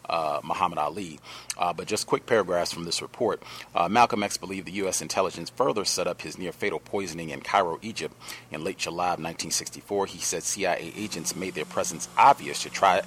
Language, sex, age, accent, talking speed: English, male, 40-59, American, 195 wpm